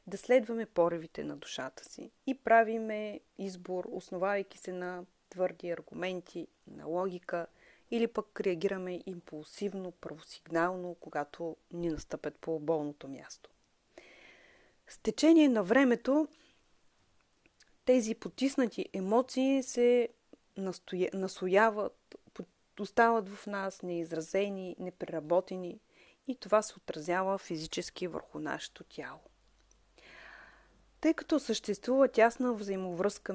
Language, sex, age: Bulgarian, female, 30-49